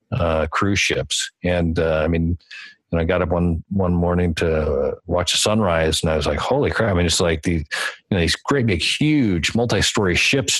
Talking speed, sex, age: 220 wpm, male, 40-59